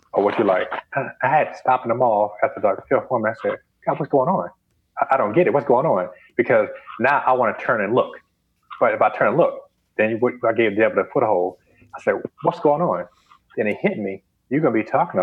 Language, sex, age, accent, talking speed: English, male, 30-49, American, 255 wpm